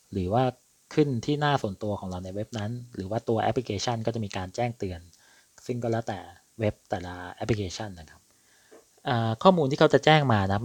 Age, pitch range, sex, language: 20-39, 100-125 Hz, male, Thai